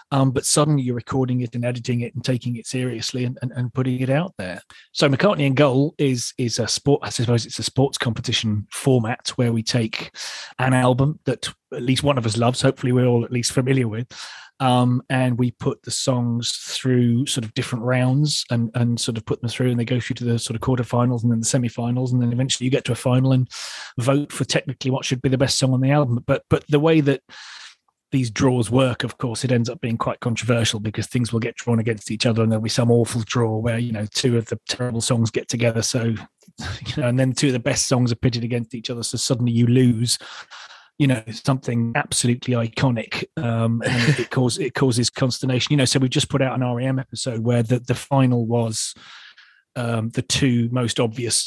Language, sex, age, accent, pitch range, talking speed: English, male, 30-49, British, 120-130 Hz, 230 wpm